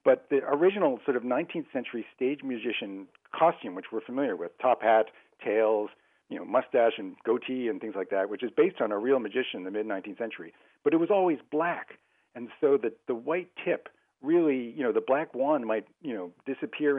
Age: 50-69